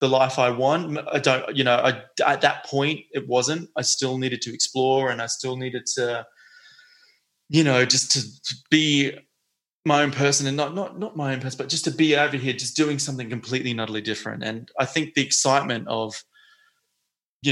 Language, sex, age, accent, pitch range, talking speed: English, male, 20-39, Australian, 120-140 Hz, 200 wpm